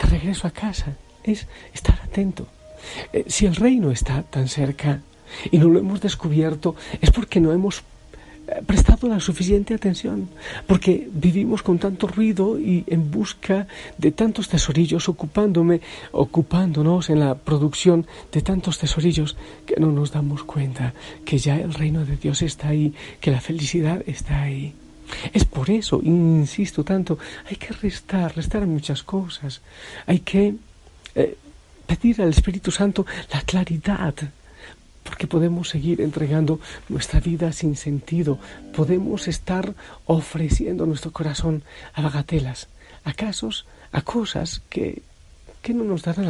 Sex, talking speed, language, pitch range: male, 140 wpm, Spanish, 145-185 Hz